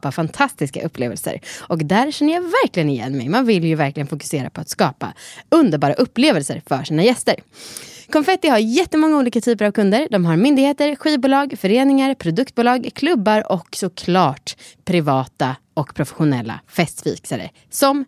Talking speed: 145 wpm